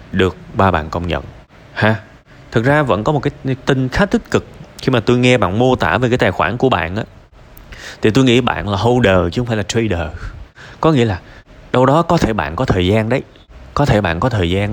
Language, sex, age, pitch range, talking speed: Vietnamese, male, 20-39, 95-125 Hz, 240 wpm